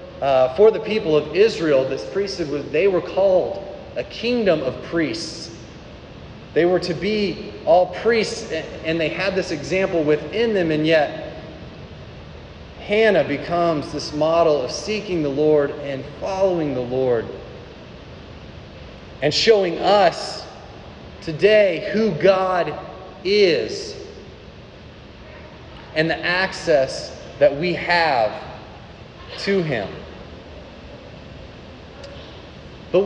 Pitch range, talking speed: 160-215 Hz, 105 wpm